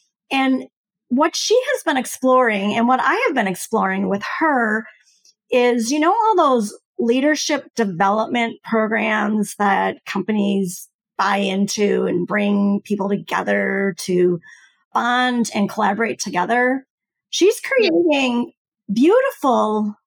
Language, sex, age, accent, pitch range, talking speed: English, female, 40-59, American, 205-270 Hz, 115 wpm